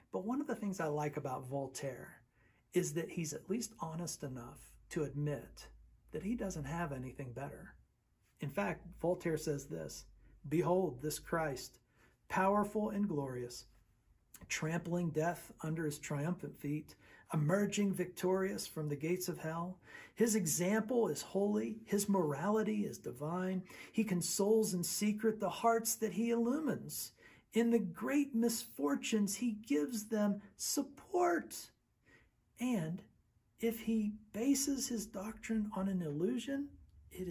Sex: male